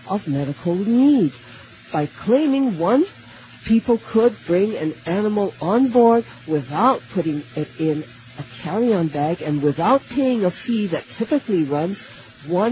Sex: female